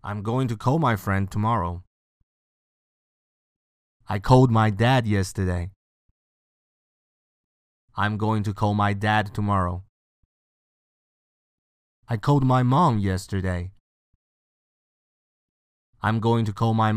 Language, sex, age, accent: Chinese, male, 30-49, American